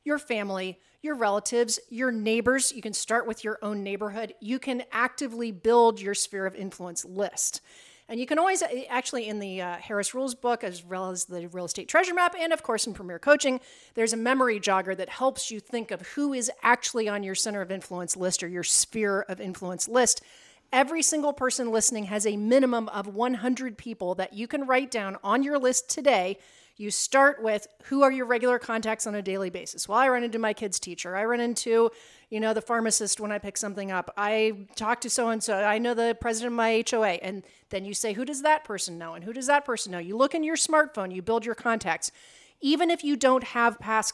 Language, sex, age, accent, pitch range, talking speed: English, female, 40-59, American, 195-250 Hz, 220 wpm